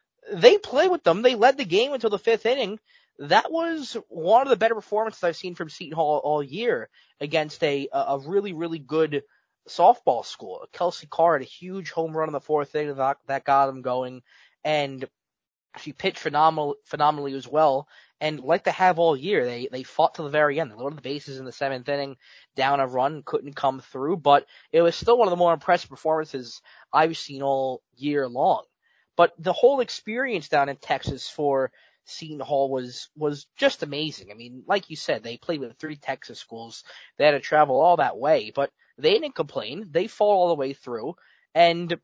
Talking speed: 205 wpm